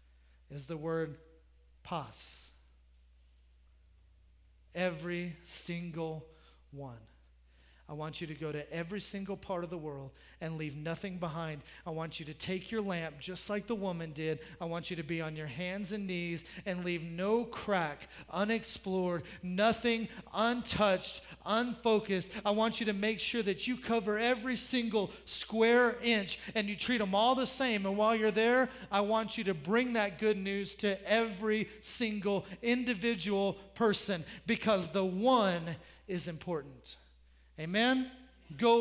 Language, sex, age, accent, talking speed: English, male, 30-49, American, 150 wpm